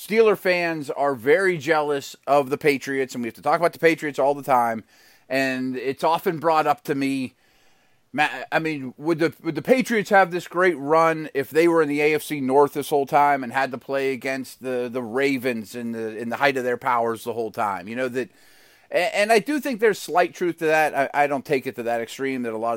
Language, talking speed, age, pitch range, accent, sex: English, 235 wpm, 30-49, 130-175 Hz, American, male